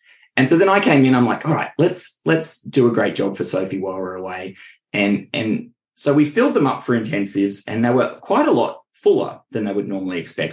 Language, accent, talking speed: English, Australian, 240 wpm